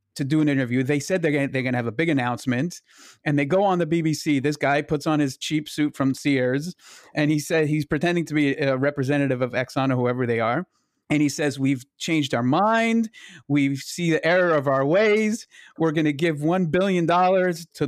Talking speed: 215 wpm